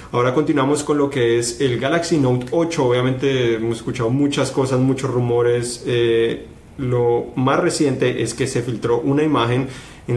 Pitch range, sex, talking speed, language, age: 115-140 Hz, male, 165 wpm, Spanish, 30-49